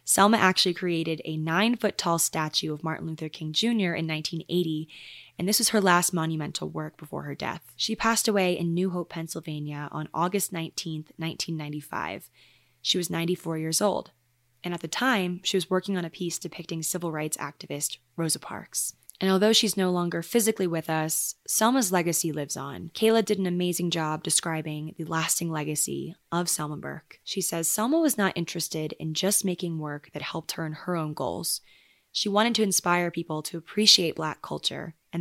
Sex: female